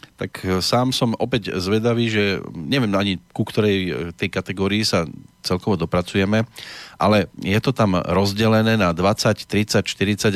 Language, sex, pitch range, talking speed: Slovak, male, 90-110 Hz, 140 wpm